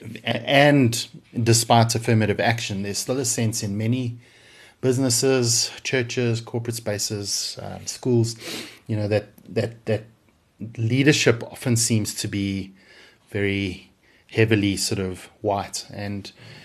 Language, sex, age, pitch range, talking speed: English, male, 30-49, 105-125 Hz, 115 wpm